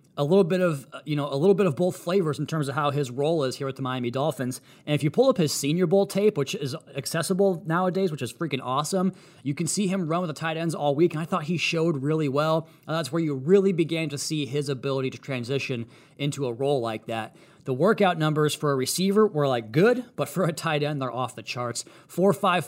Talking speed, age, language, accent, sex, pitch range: 255 wpm, 30-49, English, American, male, 135-170 Hz